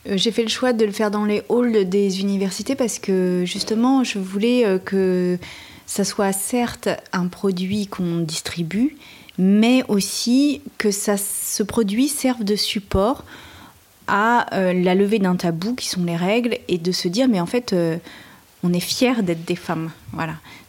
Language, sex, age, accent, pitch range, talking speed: French, female, 30-49, French, 175-225 Hz, 165 wpm